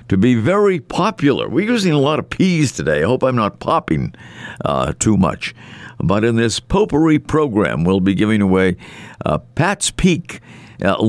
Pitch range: 90-130 Hz